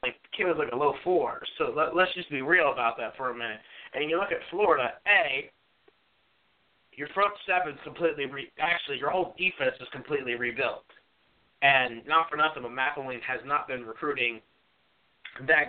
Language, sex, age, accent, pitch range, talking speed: English, male, 20-39, American, 130-165 Hz, 175 wpm